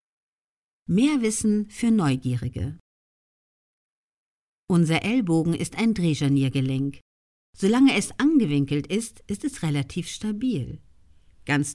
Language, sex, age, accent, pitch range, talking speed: German, female, 50-69, German, 130-215 Hz, 90 wpm